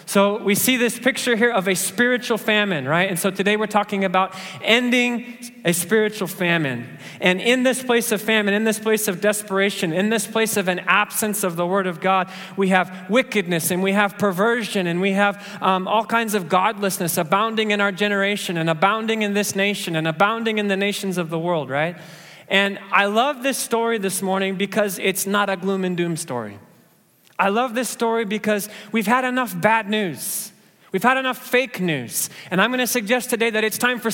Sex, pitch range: male, 190-225 Hz